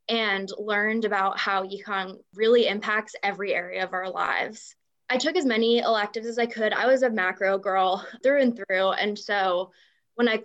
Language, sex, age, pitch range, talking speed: English, female, 20-39, 195-240 Hz, 185 wpm